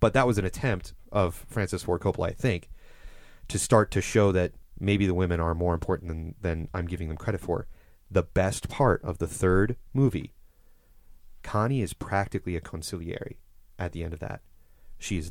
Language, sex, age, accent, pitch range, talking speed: English, male, 30-49, American, 85-105 Hz, 190 wpm